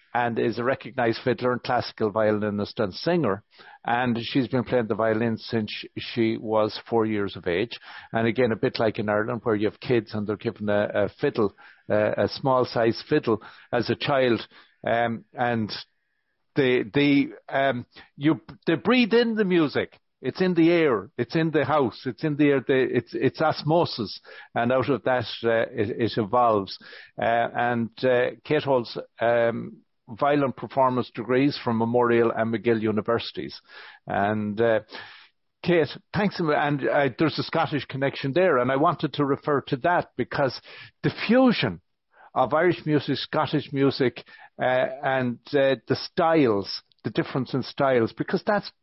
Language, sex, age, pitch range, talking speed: English, male, 60-79, 115-150 Hz, 165 wpm